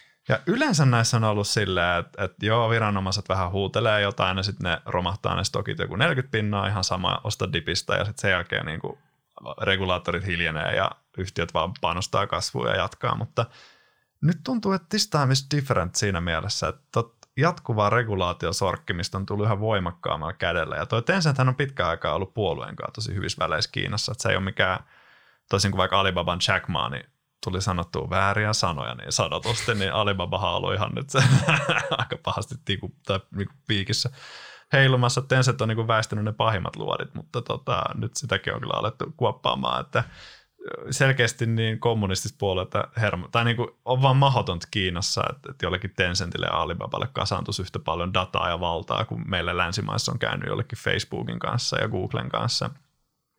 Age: 20-39